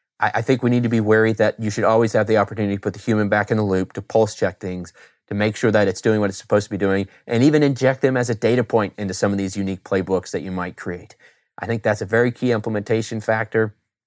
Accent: American